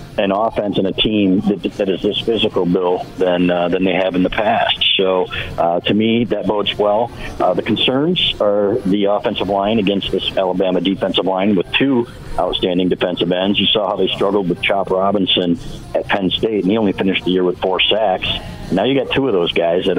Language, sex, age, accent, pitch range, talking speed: English, male, 50-69, American, 95-110 Hz, 215 wpm